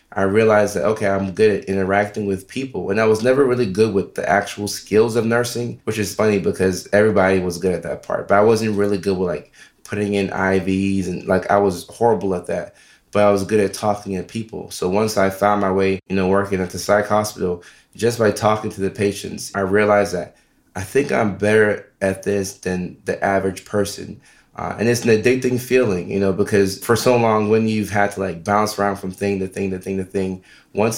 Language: English